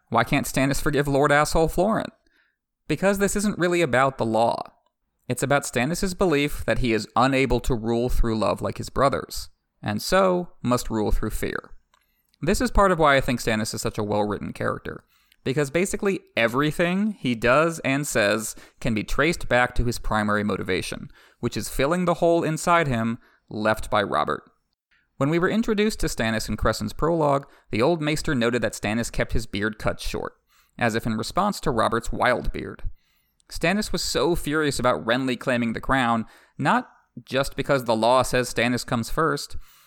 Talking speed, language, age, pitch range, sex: 180 wpm, English, 30-49, 115-155 Hz, male